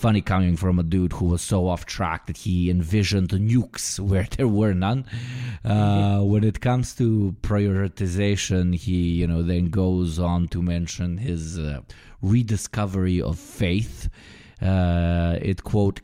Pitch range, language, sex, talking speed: 90-115 Hz, English, male, 150 wpm